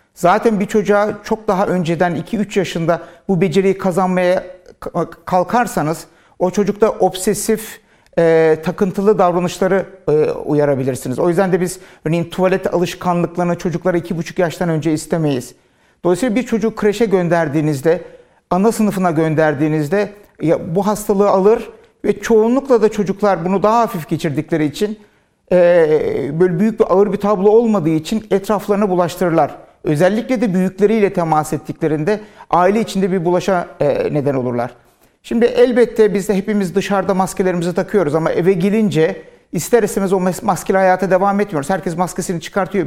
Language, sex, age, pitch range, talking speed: Turkish, male, 60-79, 175-210 Hz, 135 wpm